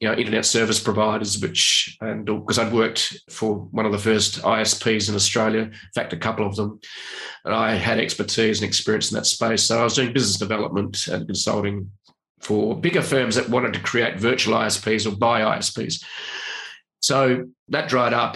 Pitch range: 105-125 Hz